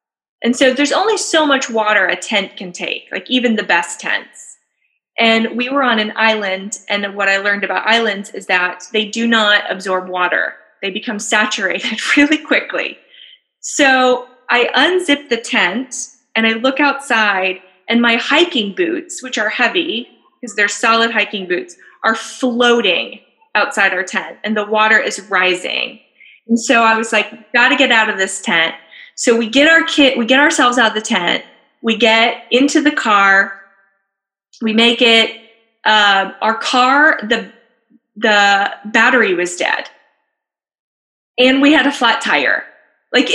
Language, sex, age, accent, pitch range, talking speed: English, female, 20-39, American, 205-265 Hz, 165 wpm